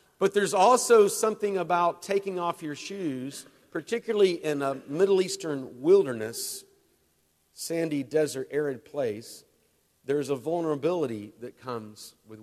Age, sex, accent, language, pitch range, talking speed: 50-69, male, American, English, 105-150 Hz, 120 wpm